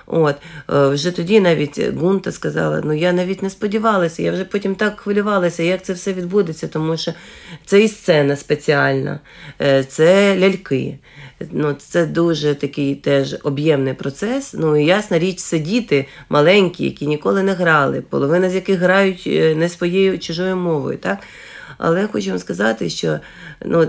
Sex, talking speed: female, 155 wpm